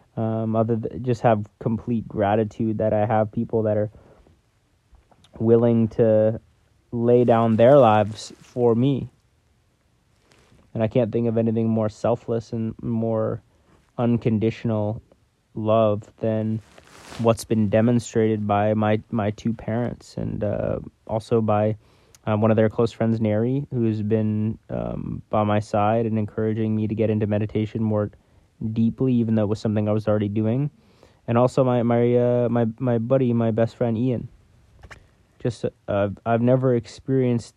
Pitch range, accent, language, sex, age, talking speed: 105-115 Hz, American, English, male, 20-39, 150 wpm